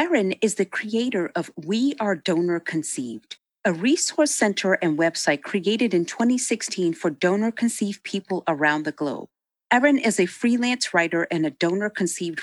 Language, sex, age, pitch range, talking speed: English, female, 40-59, 175-240 Hz, 150 wpm